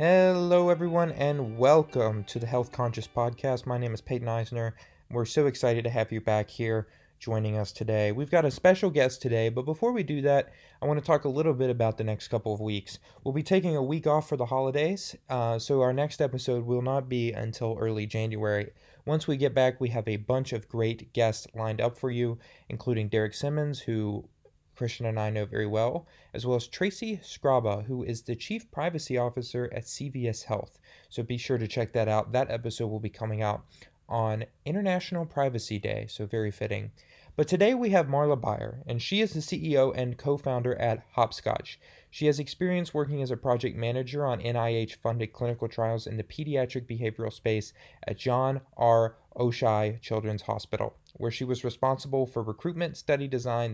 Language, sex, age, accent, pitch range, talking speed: English, male, 20-39, American, 115-140 Hz, 195 wpm